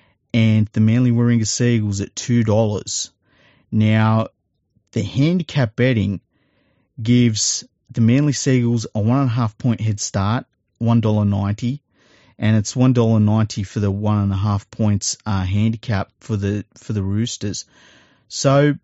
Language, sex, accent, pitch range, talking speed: English, male, Australian, 105-120 Hz, 115 wpm